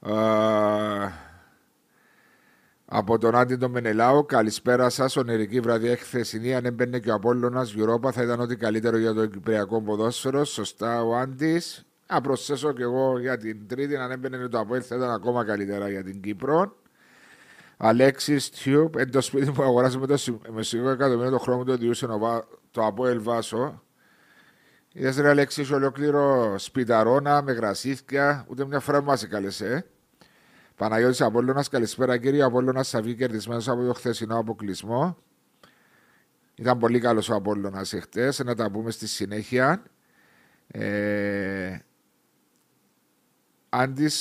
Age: 50-69